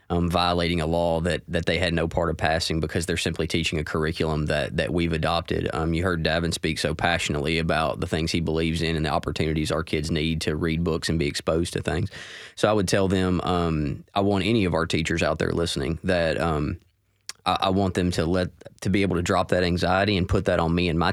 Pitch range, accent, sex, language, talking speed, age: 85-95 Hz, American, male, English, 245 wpm, 20-39